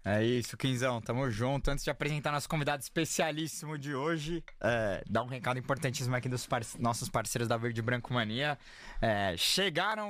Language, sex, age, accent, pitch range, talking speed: Portuguese, male, 20-39, Brazilian, 125-155 Hz, 155 wpm